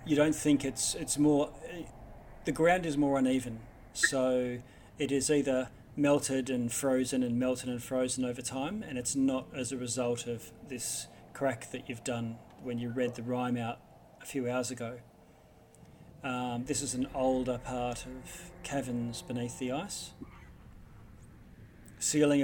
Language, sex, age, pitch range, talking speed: English, male, 40-59, 125-140 Hz, 155 wpm